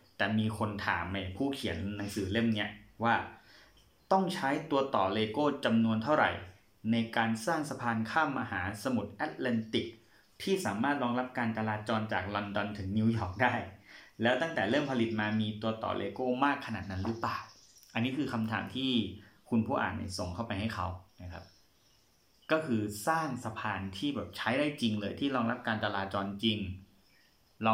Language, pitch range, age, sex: Thai, 100-120 Hz, 20-39, male